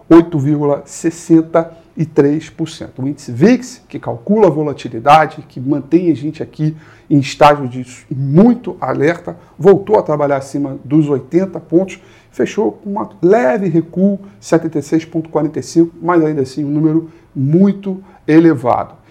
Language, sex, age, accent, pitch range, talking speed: Portuguese, male, 40-59, Brazilian, 140-170 Hz, 115 wpm